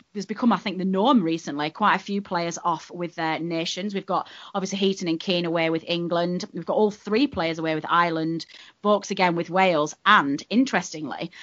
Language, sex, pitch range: English, female, 155-190 Hz